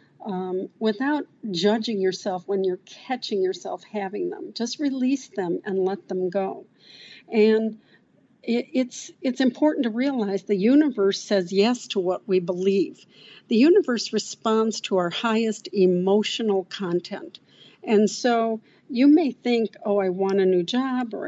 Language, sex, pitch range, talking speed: English, female, 190-235 Hz, 145 wpm